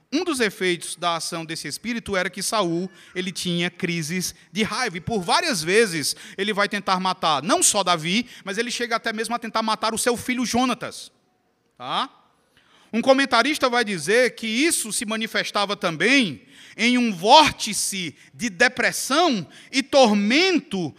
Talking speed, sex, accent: 155 wpm, male, Brazilian